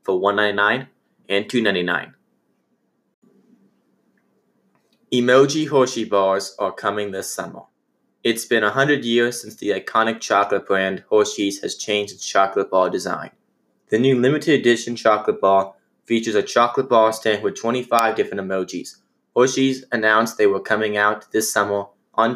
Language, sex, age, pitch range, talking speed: English, male, 20-39, 100-130 Hz, 140 wpm